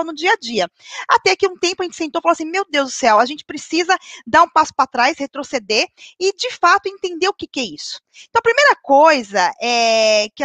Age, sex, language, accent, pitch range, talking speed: 20-39, female, Portuguese, Brazilian, 250-345 Hz, 235 wpm